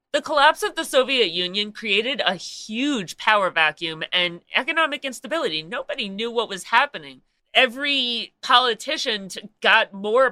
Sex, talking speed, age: female, 135 wpm, 30-49